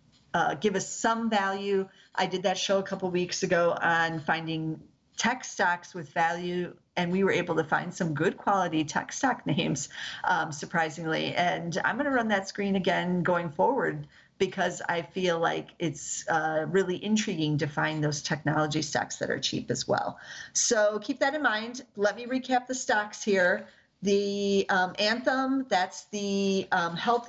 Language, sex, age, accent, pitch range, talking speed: English, female, 40-59, American, 170-200 Hz, 175 wpm